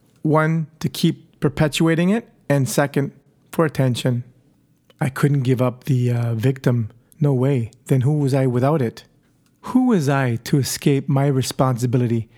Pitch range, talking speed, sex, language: 130-155 Hz, 150 wpm, male, English